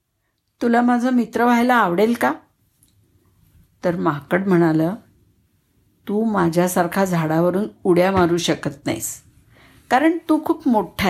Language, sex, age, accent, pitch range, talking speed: Marathi, female, 60-79, native, 160-230 Hz, 110 wpm